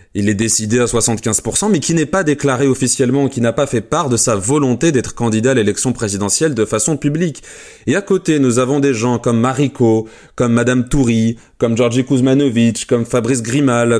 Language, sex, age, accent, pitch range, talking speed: French, male, 30-49, French, 115-145 Hz, 195 wpm